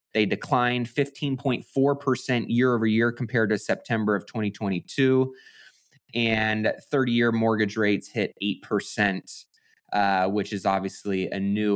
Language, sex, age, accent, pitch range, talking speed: English, male, 20-39, American, 105-130 Hz, 105 wpm